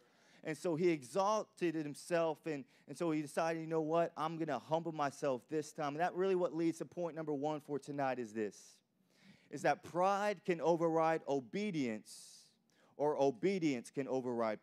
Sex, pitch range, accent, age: male, 145-175 Hz, American, 30-49